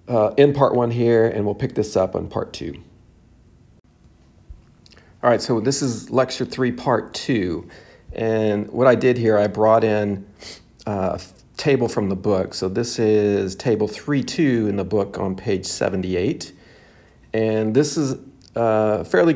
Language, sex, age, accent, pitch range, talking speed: English, male, 50-69, American, 95-115 Hz, 160 wpm